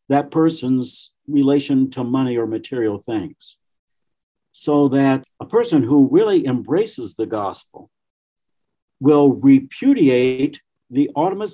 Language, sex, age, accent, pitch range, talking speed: English, male, 60-79, American, 130-175 Hz, 110 wpm